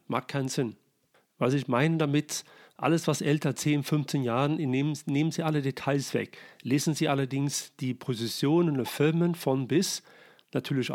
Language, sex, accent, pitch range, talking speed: German, male, German, 135-160 Hz, 155 wpm